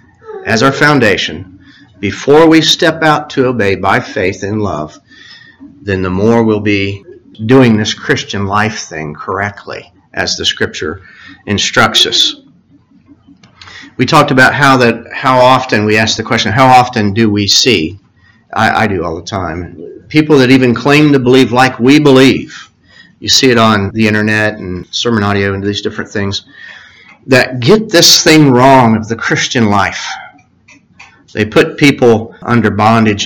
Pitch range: 100-135 Hz